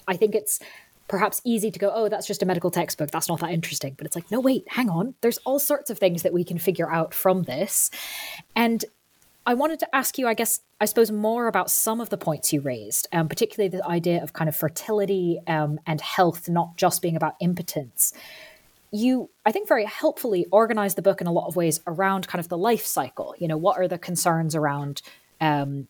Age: 20-39